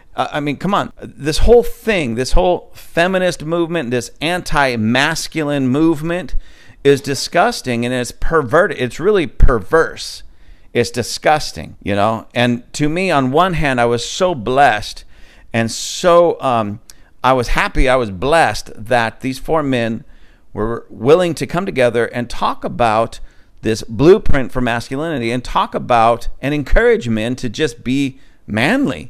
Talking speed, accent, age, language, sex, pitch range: 145 wpm, American, 50-69, English, male, 115-160 Hz